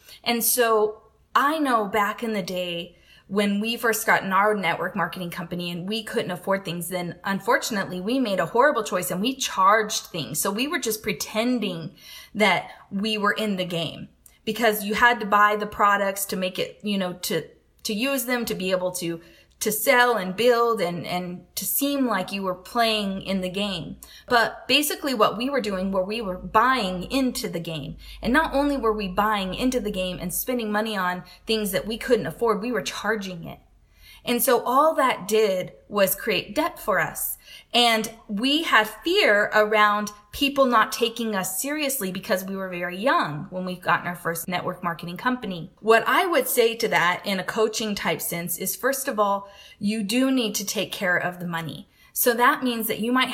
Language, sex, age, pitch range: English, female, 20-39, 185-235 Hz